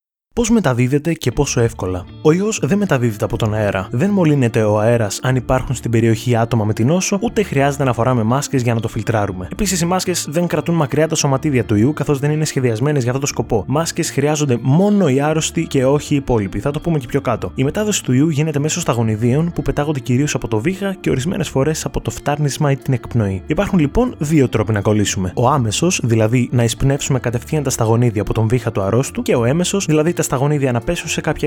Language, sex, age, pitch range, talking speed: Greek, male, 20-39, 120-160 Hz, 220 wpm